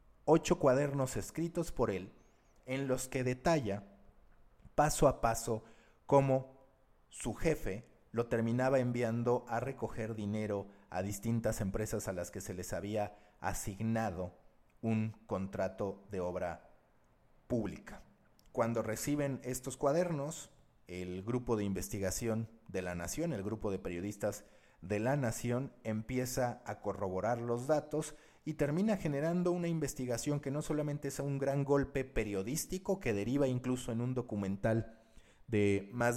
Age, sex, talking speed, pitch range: 40-59, male, 135 wpm, 105-135 Hz